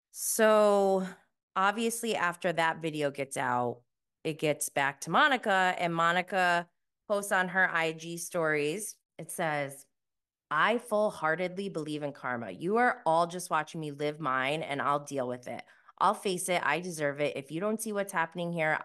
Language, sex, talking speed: English, female, 170 wpm